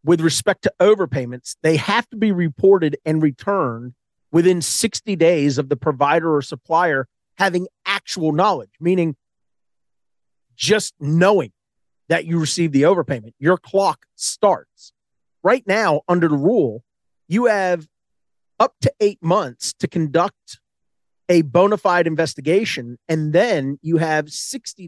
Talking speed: 135 wpm